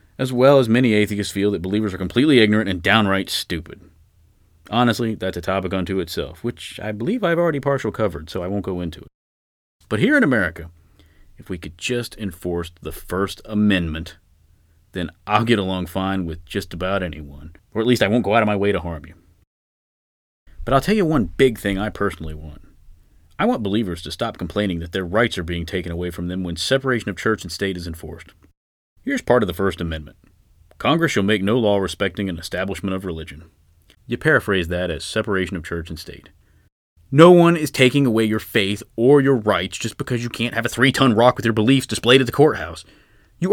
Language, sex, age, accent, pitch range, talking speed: English, male, 30-49, American, 85-120 Hz, 210 wpm